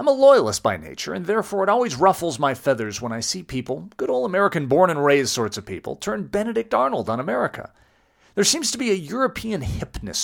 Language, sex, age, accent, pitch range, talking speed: English, male, 40-59, American, 130-200 Hz, 215 wpm